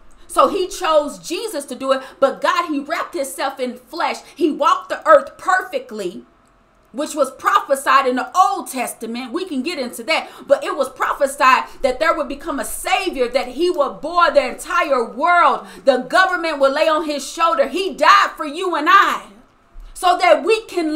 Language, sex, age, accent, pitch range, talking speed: English, female, 40-59, American, 275-360 Hz, 185 wpm